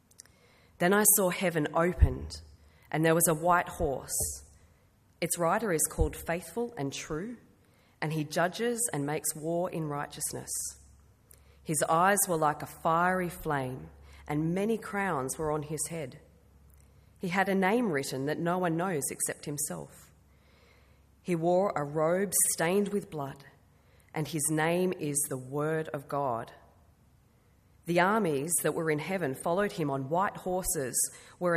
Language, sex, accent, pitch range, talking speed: English, female, Australian, 130-180 Hz, 150 wpm